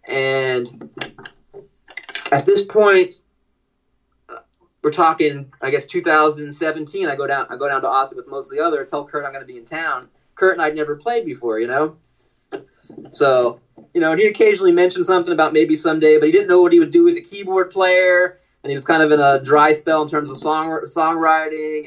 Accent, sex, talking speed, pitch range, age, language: American, male, 205 wpm, 135-190 Hz, 30-49, English